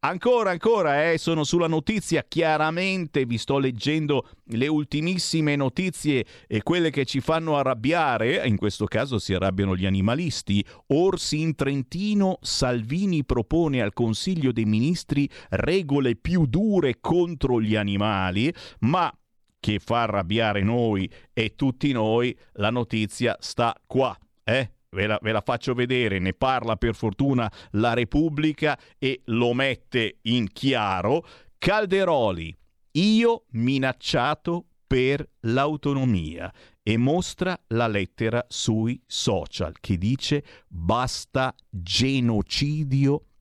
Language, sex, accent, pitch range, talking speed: Italian, male, native, 105-160 Hz, 115 wpm